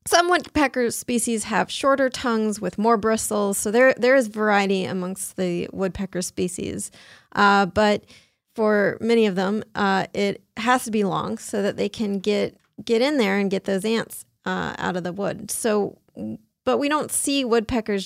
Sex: female